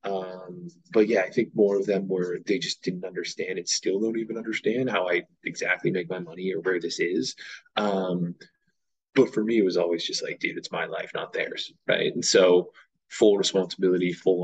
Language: English